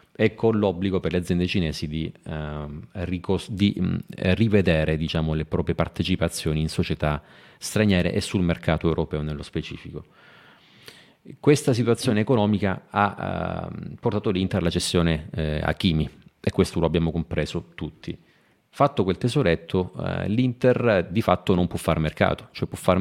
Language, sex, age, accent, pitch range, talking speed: Italian, male, 30-49, native, 80-100 Hz, 155 wpm